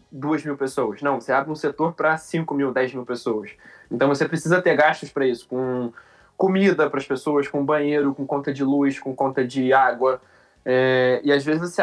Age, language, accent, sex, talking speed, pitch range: 20-39, Portuguese, Brazilian, male, 210 wpm, 135-160 Hz